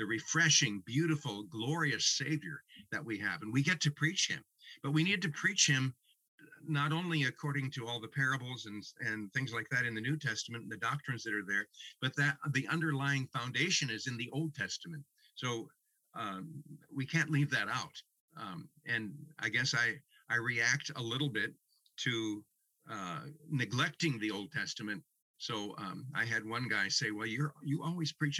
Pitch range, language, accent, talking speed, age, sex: 115-155 Hz, English, American, 185 wpm, 50-69, male